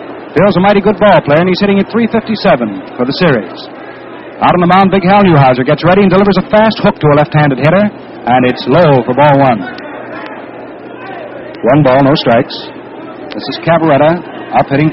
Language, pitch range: English, 150-205 Hz